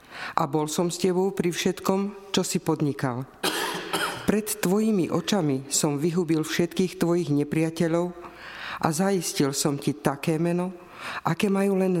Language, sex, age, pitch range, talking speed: Slovak, female, 50-69, 150-180 Hz, 135 wpm